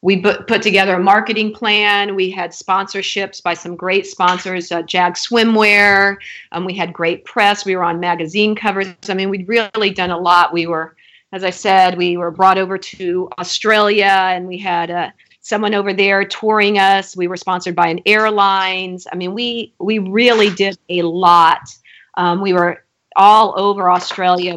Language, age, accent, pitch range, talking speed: English, 40-59, American, 180-205 Hz, 180 wpm